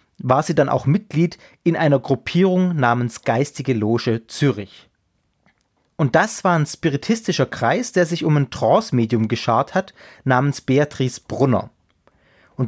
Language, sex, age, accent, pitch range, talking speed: German, male, 30-49, German, 125-160 Hz, 135 wpm